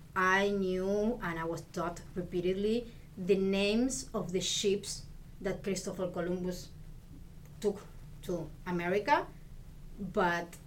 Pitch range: 165-205 Hz